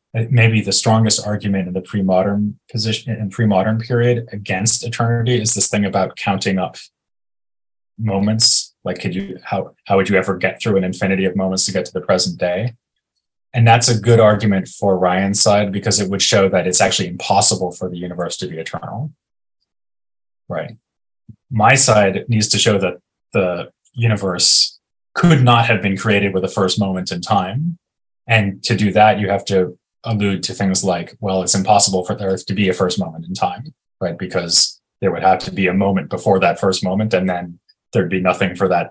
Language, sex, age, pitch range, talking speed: English, male, 20-39, 95-115 Hz, 195 wpm